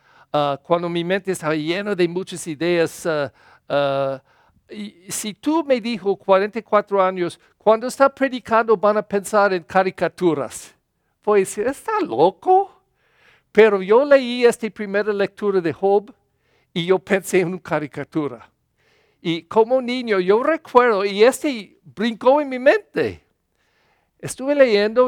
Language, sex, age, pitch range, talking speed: English, male, 50-69, 160-220 Hz, 135 wpm